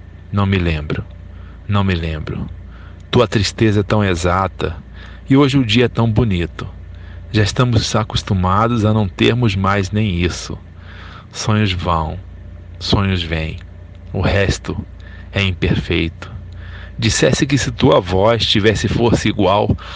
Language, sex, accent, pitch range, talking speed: Portuguese, male, Brazilian, 90-105 Hz, 130 wpm